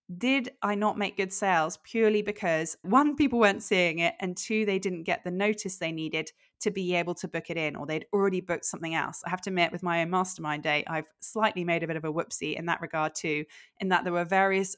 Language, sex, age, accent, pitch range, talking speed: English, female, 20-39, British, 175-215 Hz, 250 wpm